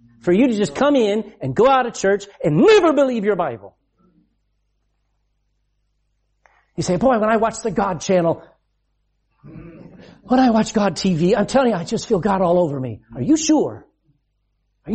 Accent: American